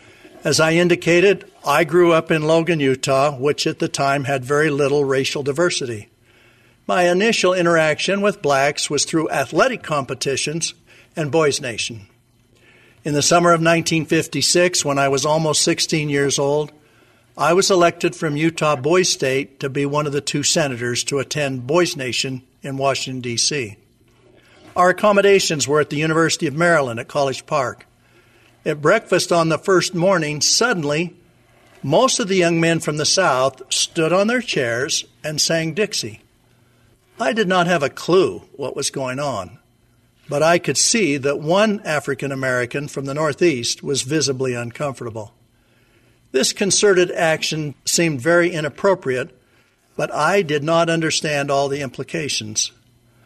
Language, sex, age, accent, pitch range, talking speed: English, male, 60-79, American, 125-170 Hz, 150 wpm